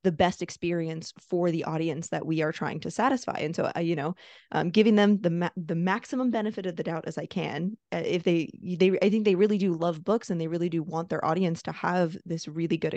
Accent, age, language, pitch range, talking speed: American, 20-39, English, 165-200 Hz, 235 wpm